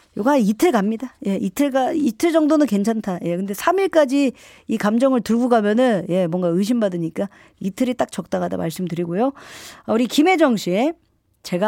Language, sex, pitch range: Korean, female, 185-270 Hz